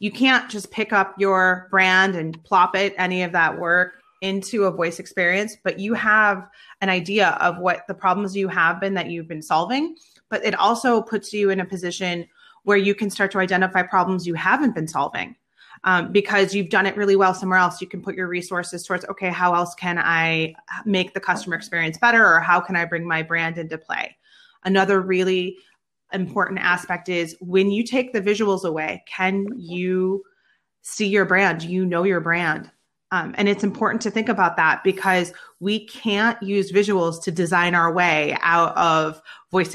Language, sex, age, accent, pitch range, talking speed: English, female, 30-49, American, 175-205 Hz, 190 wpm